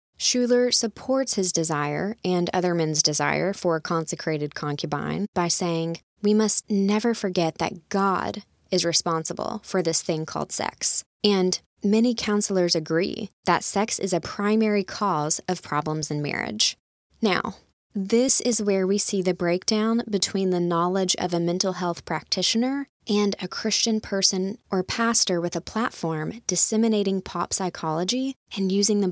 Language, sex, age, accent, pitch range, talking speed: English, female, 20-39, American, 170-215 Hz, 150 wpm